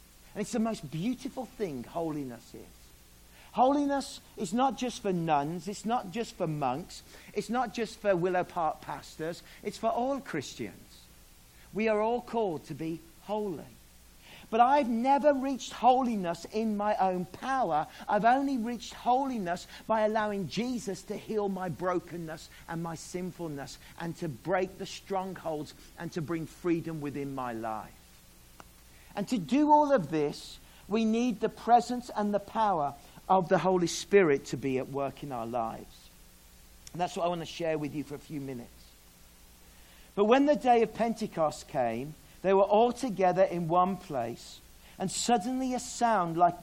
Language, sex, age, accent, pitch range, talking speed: English, male, 40-59, British, 155-220 Hz, 165 wpm